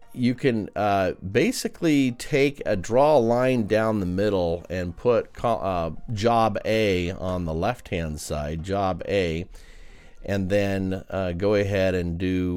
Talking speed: 140 wpm